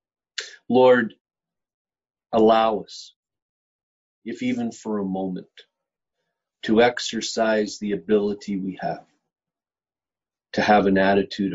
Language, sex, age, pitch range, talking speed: English, male, 40-59, 100-135 Hz, 95 wpm